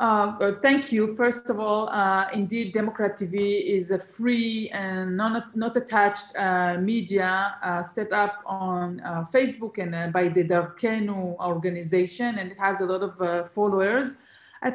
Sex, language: female, English